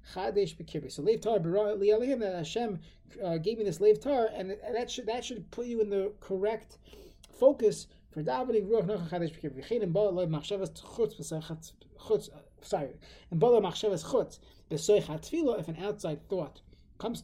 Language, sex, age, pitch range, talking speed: English, male, 30-49, 160-215 Hz, 120 wpm